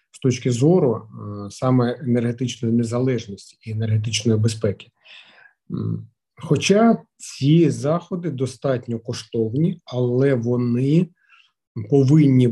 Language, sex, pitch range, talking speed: Ukrainian, male, 115-135 Hz, 80 wpm